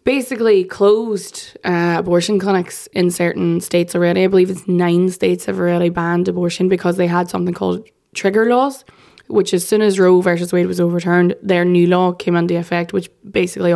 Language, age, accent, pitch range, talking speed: English, 20-39, Irish, 175-195 Hz, 185 wpm